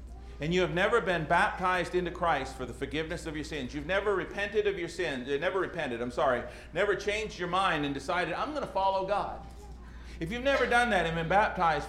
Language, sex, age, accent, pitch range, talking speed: English, male, 40-59, American, 125-185 Hz, 215 wpm